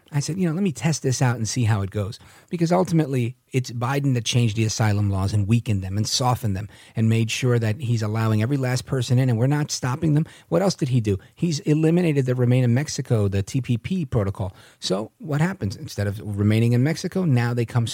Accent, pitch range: American, 110-155 Hz